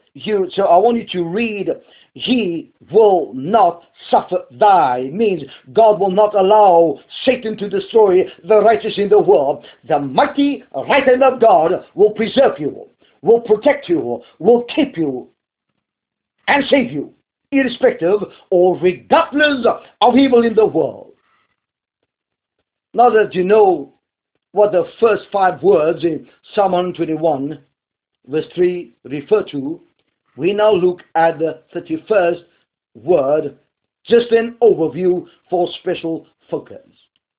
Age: 50-69